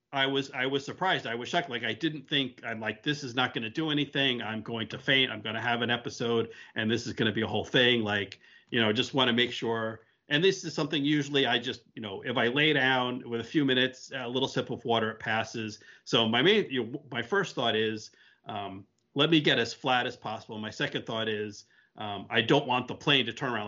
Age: 40-59